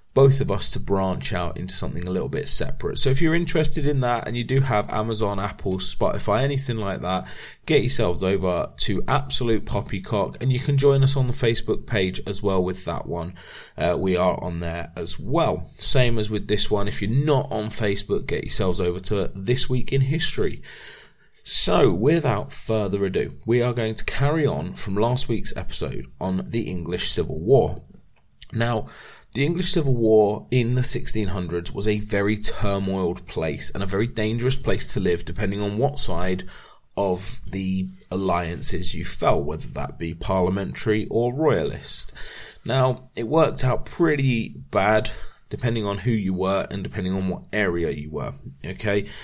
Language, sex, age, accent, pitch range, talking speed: English, male, 30-49, British, 95-125 Hz, 180 wpm